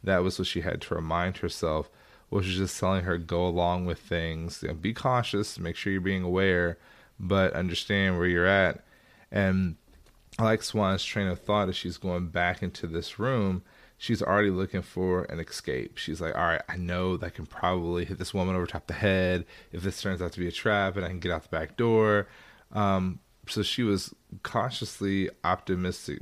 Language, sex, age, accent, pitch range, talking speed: English, male, 20-39, American, 85-100 Hz, 200 wpm